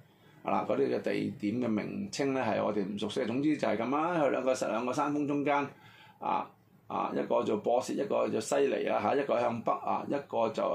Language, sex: Chinese, male